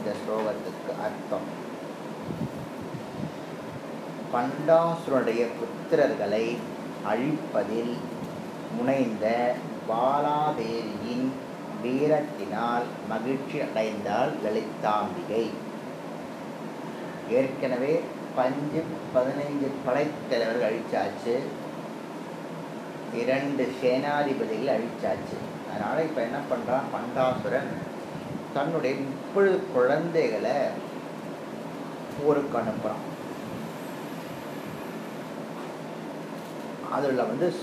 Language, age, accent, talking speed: Tamil, 30-49, native, 35 wpm